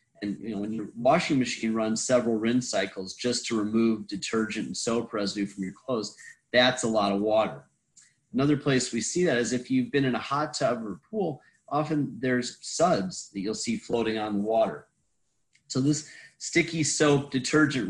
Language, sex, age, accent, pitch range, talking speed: English, male, 30-49, American, 105-130 Hz, 190 wpm